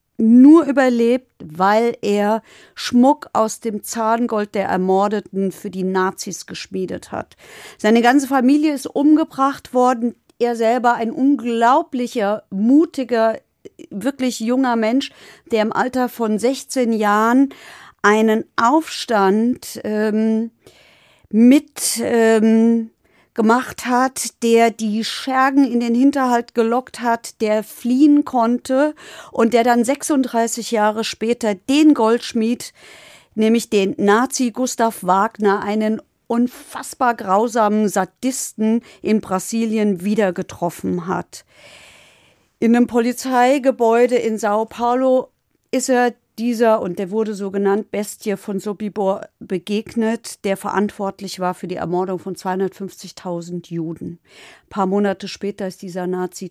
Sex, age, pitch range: female, 50-69, 195-245 Hz